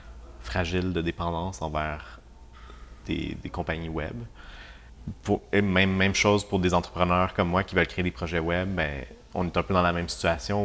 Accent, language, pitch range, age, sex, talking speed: Canadian, French, 80-90 Hz, 30-49, male, 185 wpm